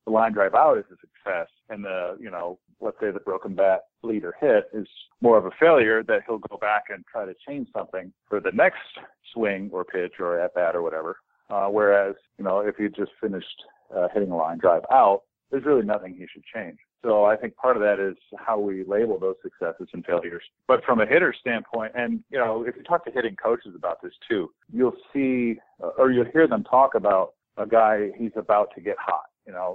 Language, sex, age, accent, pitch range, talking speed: English, male, 50-69, American, 100-145 Hz, 225 wpm